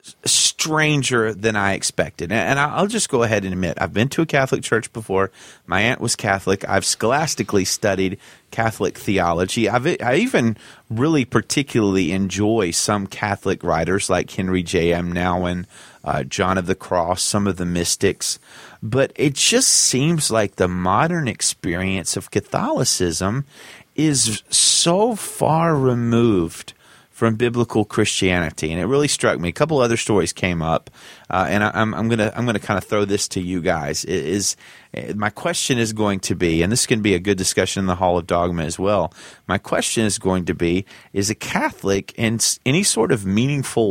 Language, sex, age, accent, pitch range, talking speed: English, male, 30-49, American, 95-125 Hz, 175 wpm